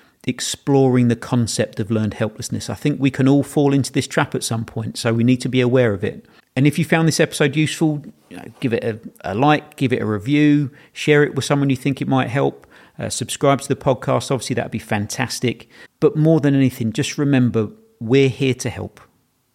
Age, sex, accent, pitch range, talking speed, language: 40-59, male, British, 110-135 Hz, 215 wpm, English